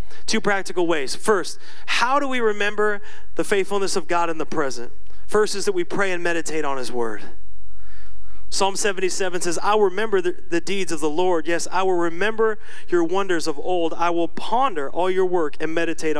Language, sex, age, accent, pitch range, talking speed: English, male, 30-49, American, 140-205 Hz, 195 wpm